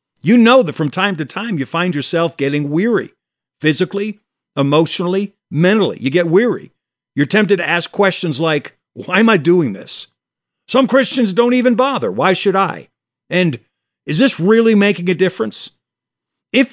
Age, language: 50-69, English